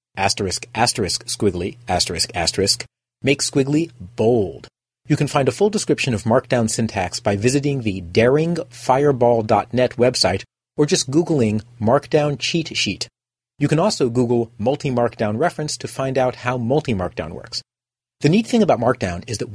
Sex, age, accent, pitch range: male, 40-59, American, 110-145 Hz